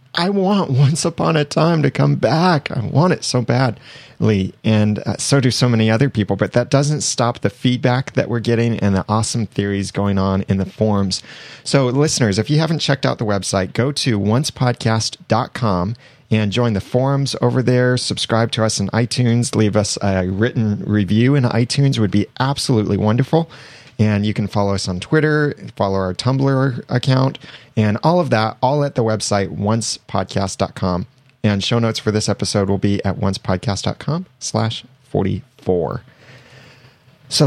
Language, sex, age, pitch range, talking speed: English, male, 30-49, 100-135 Hz, 170 wpm